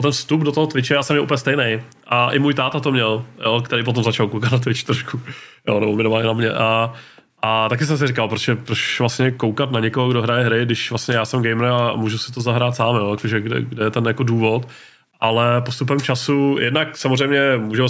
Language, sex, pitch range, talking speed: Czech, male, 110-125 Hz, 230 wpm